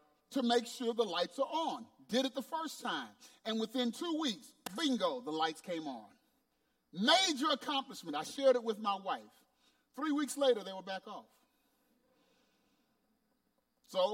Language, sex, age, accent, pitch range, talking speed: English, male, 30-49, American, 240-280 Hz, 155 wpm